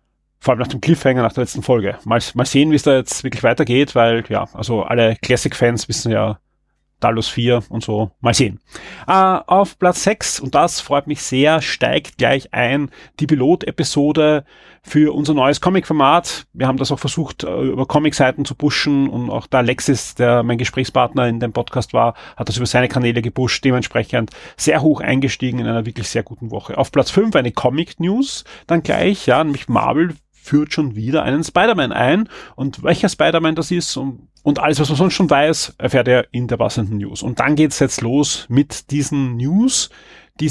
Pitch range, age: 125-155 Hz, 30-49